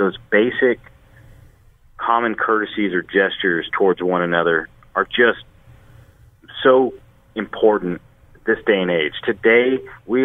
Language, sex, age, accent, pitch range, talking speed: English, male, 40-59, American, 90-115 Hz, 110 wpm